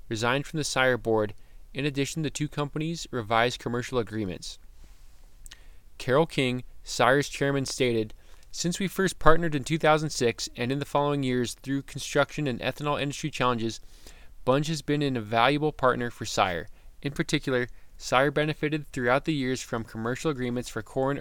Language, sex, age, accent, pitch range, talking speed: English, male, 20-39, American, 115-145 Hz, 155 wpm